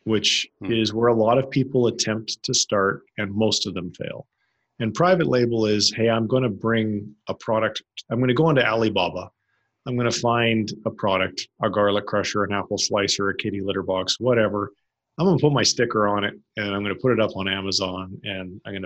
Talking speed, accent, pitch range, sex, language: 220 wpm, American, 100-125 Hz, male, English